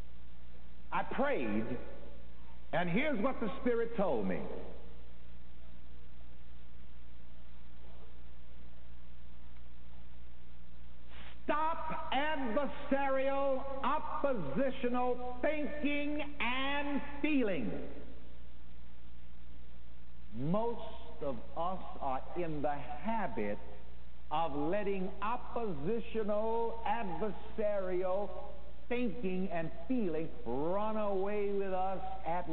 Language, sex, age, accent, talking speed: English, male, 60-79, American, 65 wpm